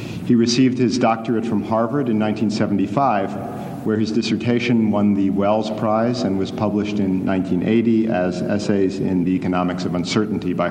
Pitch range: 100-120 Hz